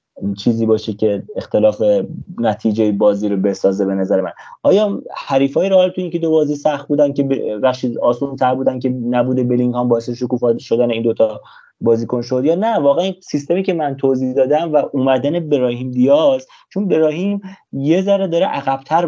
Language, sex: Persian, male